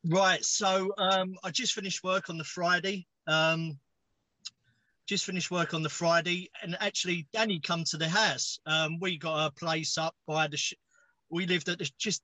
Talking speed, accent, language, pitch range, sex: 185 wpm, British, English, 150-185 Hz, male